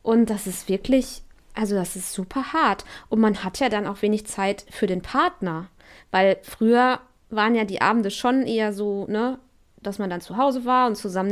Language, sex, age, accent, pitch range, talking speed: German, female, 20-39, German, 200-245 Hz, 195 wpm